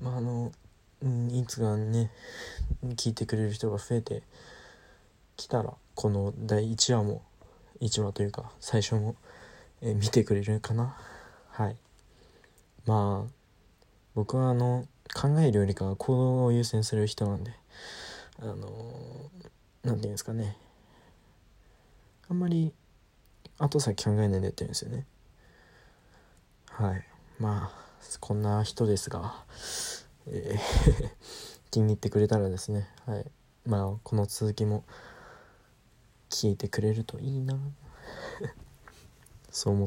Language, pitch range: Japanese, 105-120 Hz